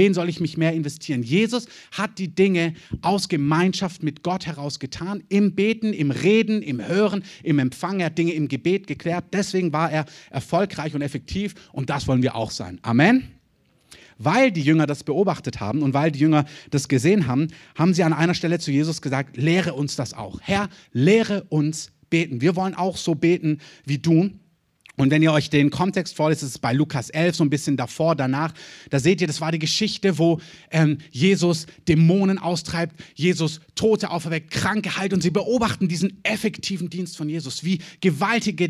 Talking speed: 190 wpm